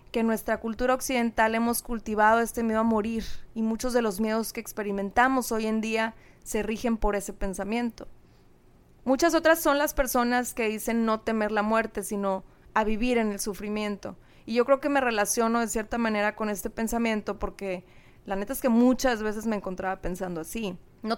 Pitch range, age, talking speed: 210-240 Hz, 20-39, 190 wpm